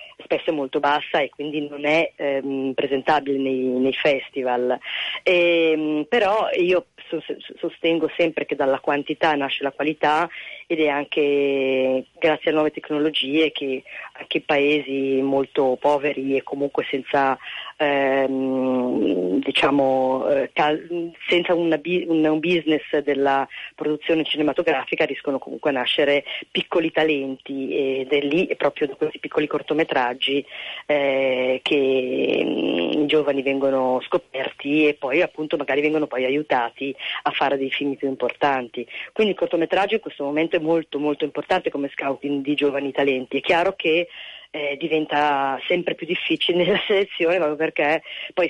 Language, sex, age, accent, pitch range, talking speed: Italian, female, 30-49, native, 135-160 Hz, 130 wpm